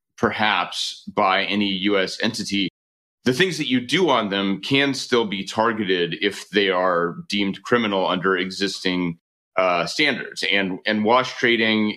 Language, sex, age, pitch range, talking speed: English, male, 30-49, 100-120 Hz, 145 wpm